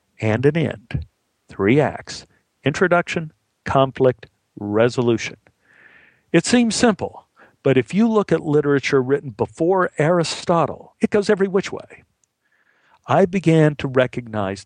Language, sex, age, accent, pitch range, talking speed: English, male, 50-69, American, 125-165 Hz, 120 wpm